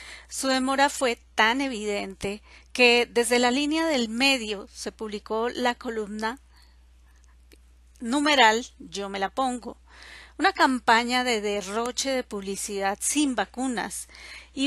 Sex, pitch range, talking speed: female, 205-260 Hz, 120 wpm